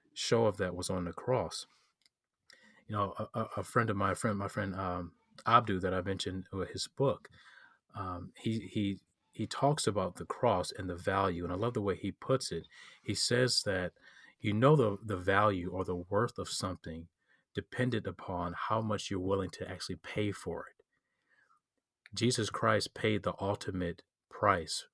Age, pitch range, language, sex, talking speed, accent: 30-49, 90-105 Hz, English, male, 185 wpm, American